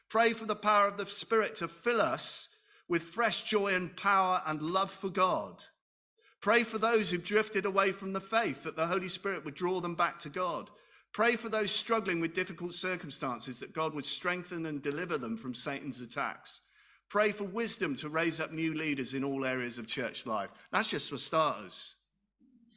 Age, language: 50-69, English